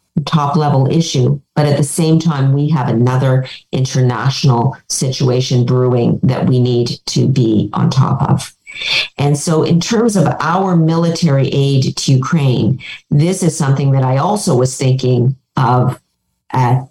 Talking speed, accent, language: 145 wpm, American, English